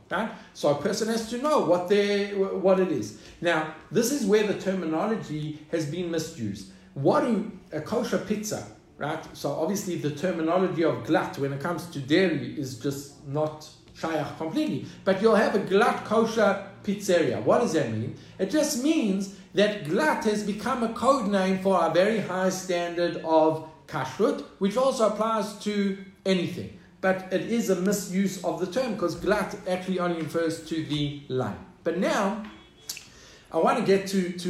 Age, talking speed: 60-79, 170 wpm